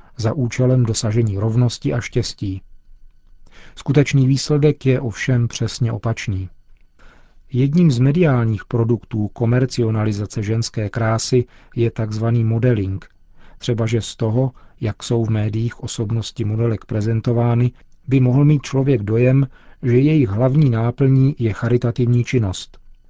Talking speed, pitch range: 115 wpm, 110-130 Hz